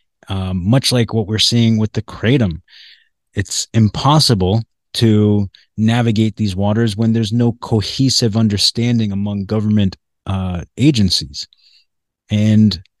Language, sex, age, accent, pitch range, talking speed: English, male, 30-49, American, 100-115 Hz, 115 wpm